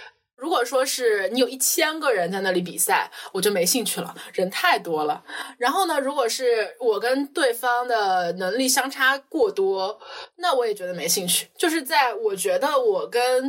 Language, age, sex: Chinese, 20-39, female